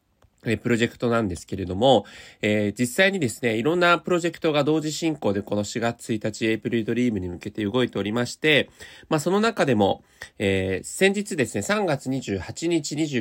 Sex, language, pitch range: male, Japanese, 110-165 Hz